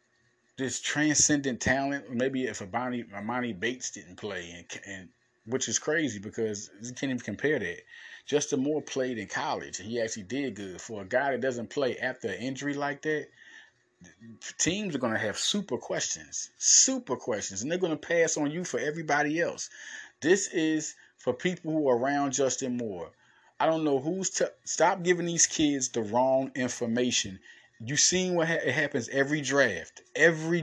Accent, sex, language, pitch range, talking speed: American, male, English, 120-155 Hz, 180 wpm